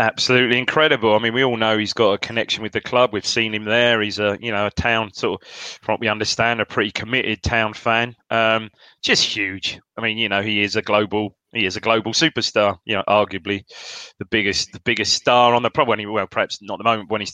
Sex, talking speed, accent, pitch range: male, 240 wpm, British, 100-115 Hz